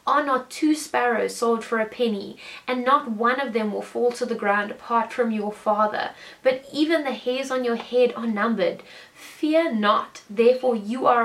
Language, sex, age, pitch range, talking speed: English, female, 10-29, 220-275 Hz, 190 wpm